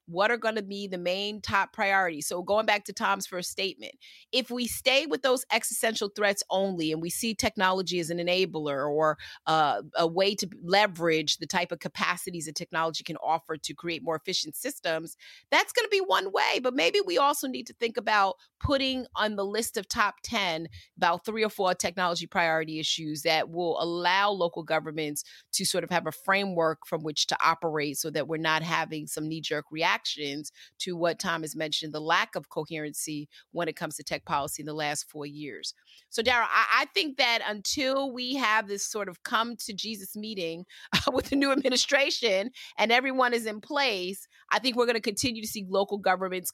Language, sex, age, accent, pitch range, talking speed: English, female, 30-49, American, 160-220 Hz, 200 wpm